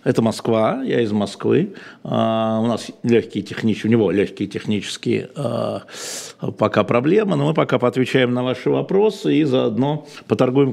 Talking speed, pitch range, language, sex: 150 wpm, 110-140 Hz, Russian, male